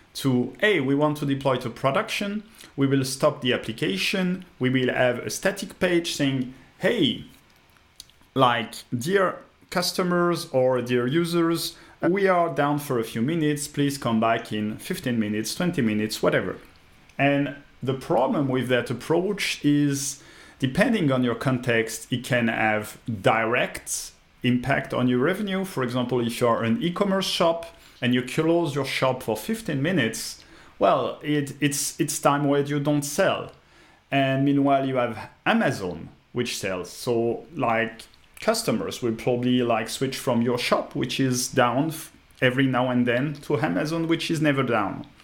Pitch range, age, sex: 125-150 Hz, 40-59, male